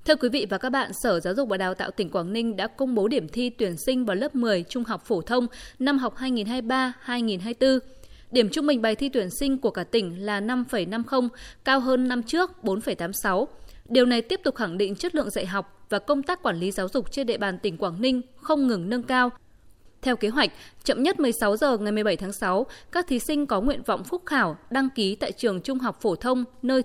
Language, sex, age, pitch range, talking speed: Vietnamese, female, 20-39, 205-270 Hz, 230 wpm